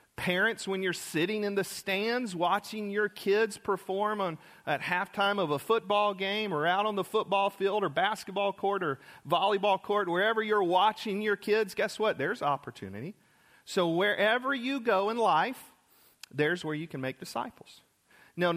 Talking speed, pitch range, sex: 170 wpm, 160-210 Hz, male